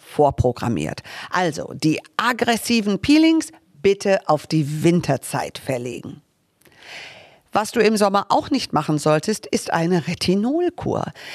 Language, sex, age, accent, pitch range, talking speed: German, female, 50-69, German, 155-220 Hz, 110 wpm